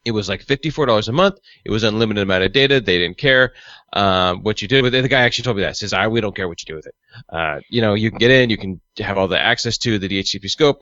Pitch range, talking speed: 105-135 Hz, 305 wpm